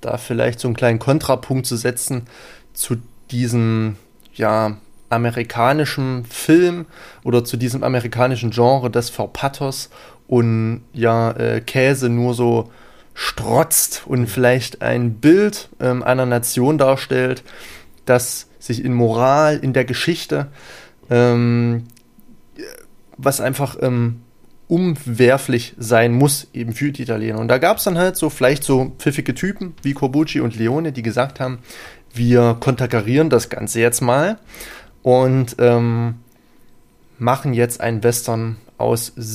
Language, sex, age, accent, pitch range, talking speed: German, male, 20-39, German, 120-140 Hz, 125 wpm